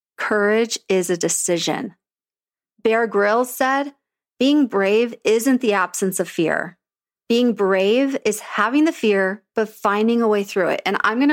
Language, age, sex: English, 30-49, female